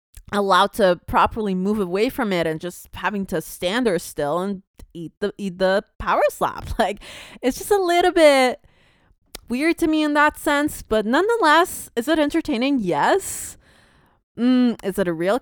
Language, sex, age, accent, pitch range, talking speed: English, female, 20-39, American, 185-265 Hz, 170 wpm